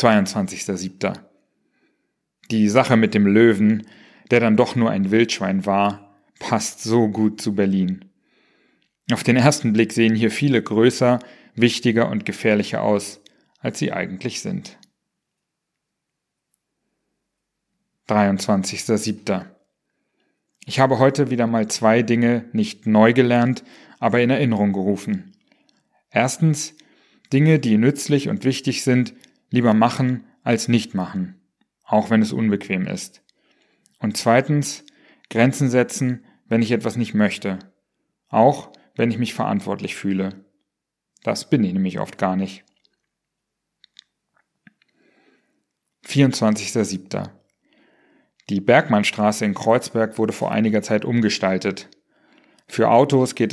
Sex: male